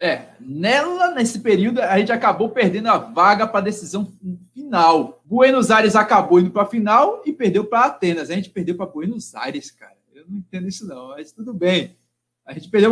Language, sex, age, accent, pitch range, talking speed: Portuguese, male, 20-39, Brazilian, 180-240 Hz, 200 wpm